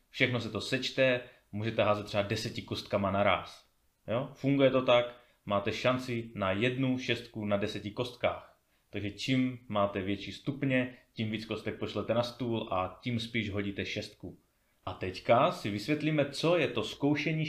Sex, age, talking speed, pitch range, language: male, 30-49, 155 wpm, 105-145 Hz, Czech